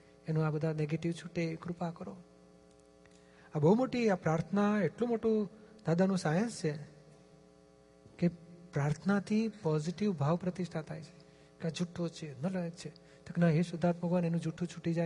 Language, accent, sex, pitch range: Gujarati, native, male, 155-185 Hz